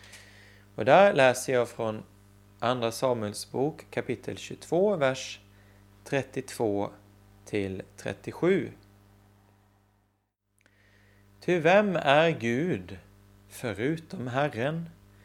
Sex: male